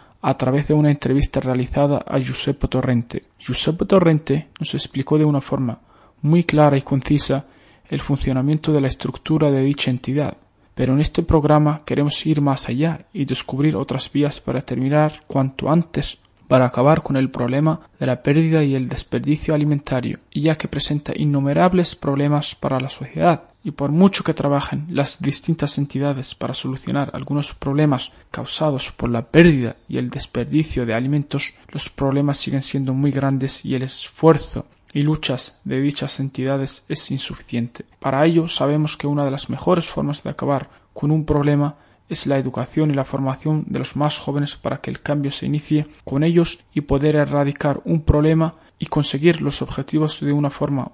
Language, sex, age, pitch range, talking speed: Italian, male, 20-39, 135-155 Hz, 170 wpm